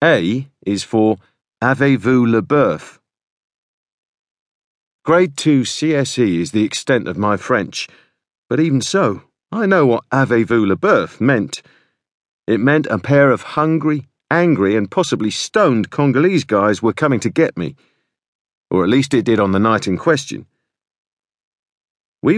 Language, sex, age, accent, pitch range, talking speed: English, male, 50-69, British, 110-155 Hz, 140 wpm